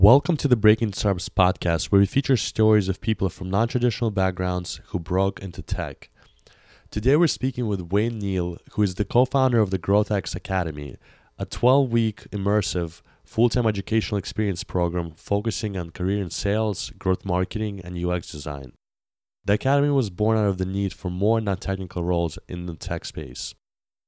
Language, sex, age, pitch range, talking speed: English, male, 20-39, 90-110 Hz, 165 wpm